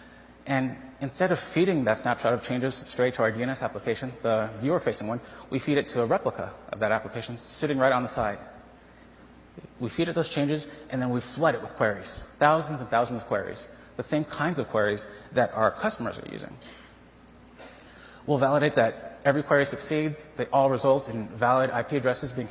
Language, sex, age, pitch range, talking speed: English, male, 30-49, 115-150 Hz, 190 wpm